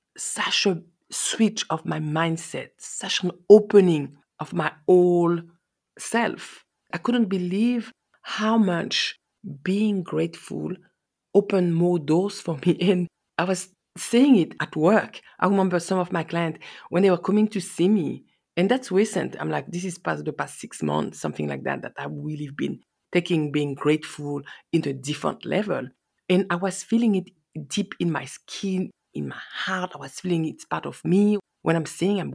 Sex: female